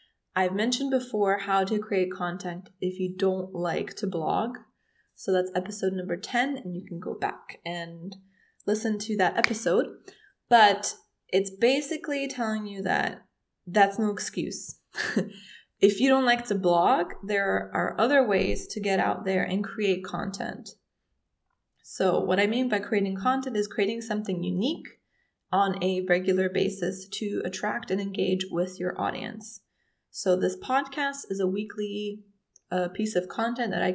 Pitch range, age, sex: 185-225 Hz, 20-39, female